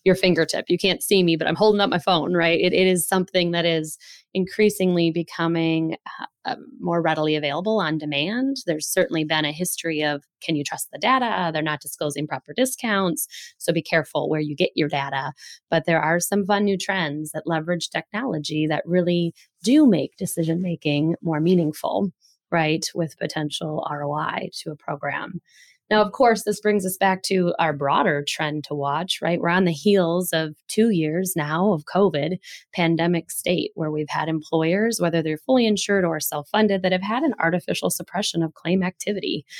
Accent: American